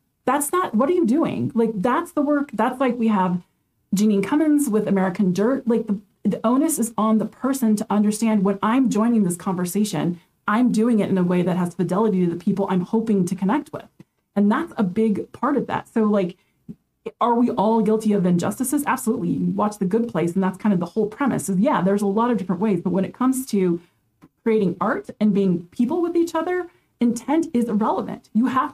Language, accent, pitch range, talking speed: English, American, 195-255 Hz, 215 wpm